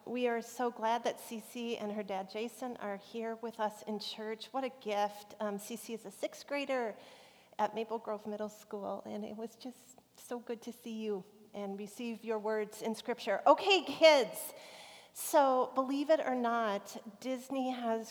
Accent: American